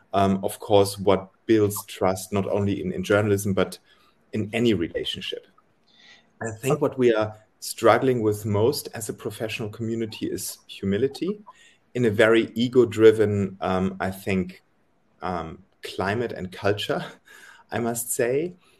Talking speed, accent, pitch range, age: 140 wpm, German, 100-120 Hz, 30-49